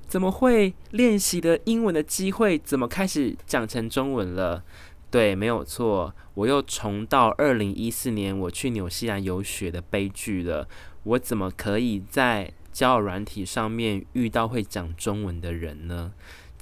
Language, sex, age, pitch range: Chinese, male, 20-39, 95-130 Hz